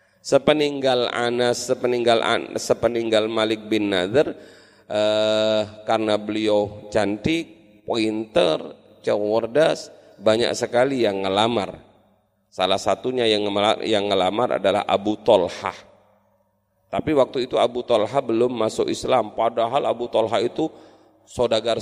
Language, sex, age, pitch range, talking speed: Indonesian, male, 40-59, 95-120 Hz, 110 wpm